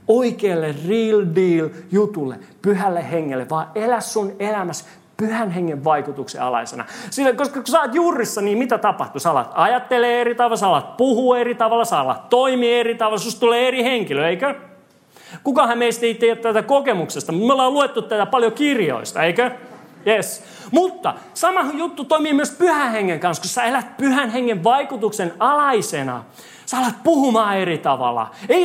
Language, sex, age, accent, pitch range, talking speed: Finnish, male, 30-49, native, 200-265 Hz, 160 wpm